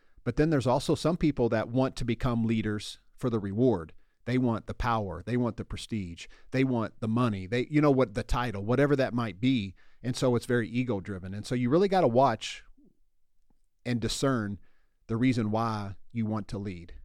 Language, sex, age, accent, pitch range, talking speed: English, male, 40-59, American, 110-130 Hz, 205 wpm